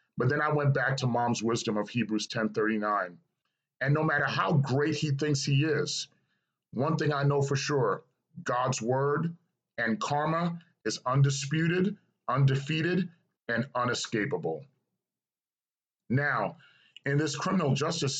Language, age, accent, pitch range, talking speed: English, 40-59, American, 115-145 Hz, 140 wpm